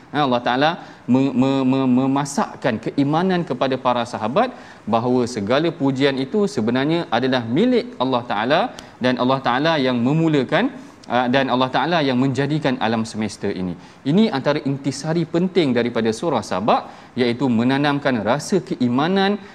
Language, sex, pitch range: Malayalam, male, 125-165 Hz